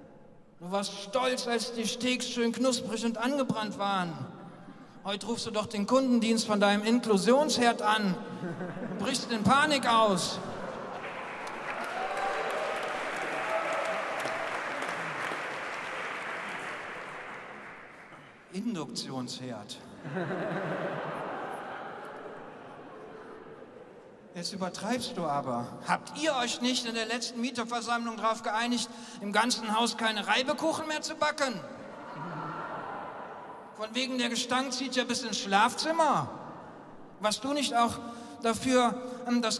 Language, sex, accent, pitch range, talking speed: German, male, German, 220-260 Hz, 95 wpm